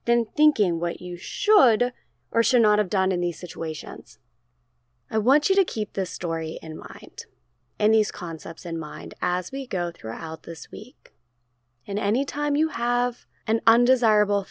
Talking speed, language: 160 wpm, English